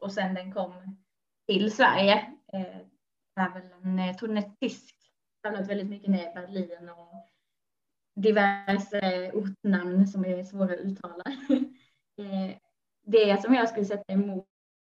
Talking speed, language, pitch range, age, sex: 125 wpm, Swedish, 185-215 Hz, 20-39, female